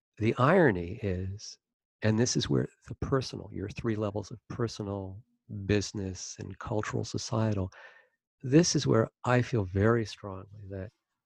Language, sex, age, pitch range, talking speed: English, male, 50-69, 100-120 Hz, 140 wpm